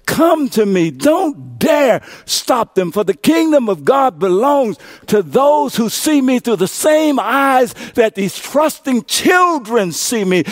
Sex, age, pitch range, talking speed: male, 60-79, 200-290 Hz, 160 wpm